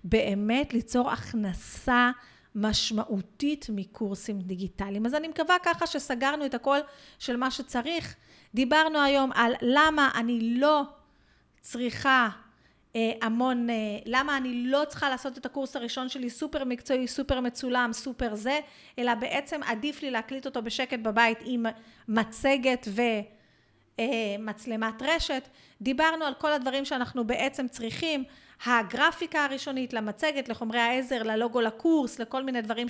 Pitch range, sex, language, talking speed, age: 230-280 Hz, female, Hebrew, 130 wpm, 40-59